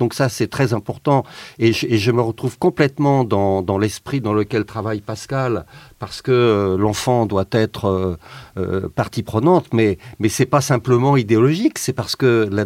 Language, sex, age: French, male, 50-69